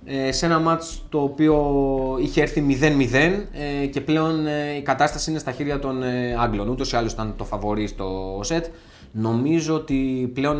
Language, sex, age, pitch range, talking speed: Greek, male, 20-39, 115-145 Hz, 160 wpm